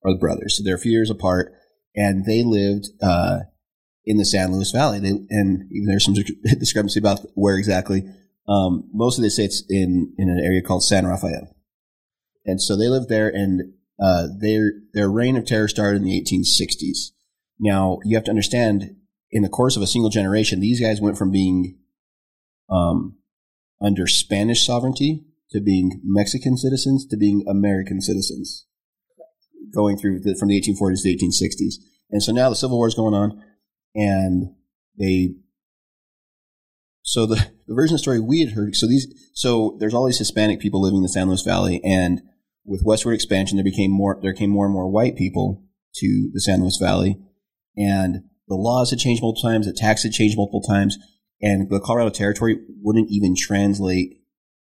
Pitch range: 95-110 Hz